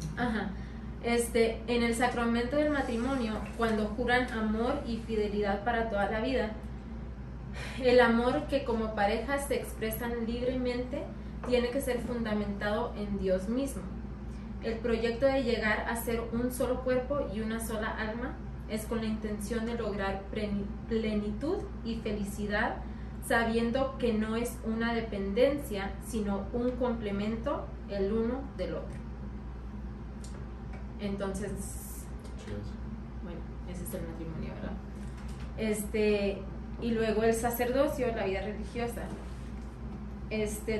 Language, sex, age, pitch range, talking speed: Spanish, female, 20-39, 200-240 Hz, 120 wpm